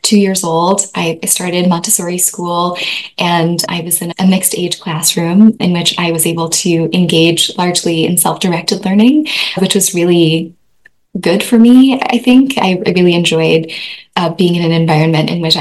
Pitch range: 170-200 Hz